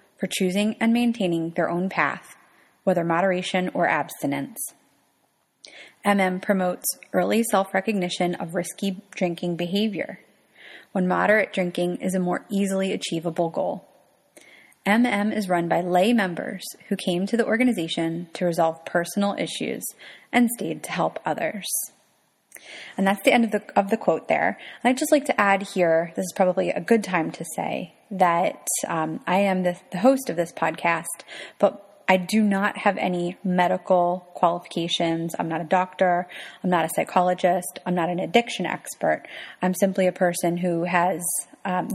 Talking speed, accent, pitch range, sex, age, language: 160 wpm, American, 175-205 Hz, female, 20-39, English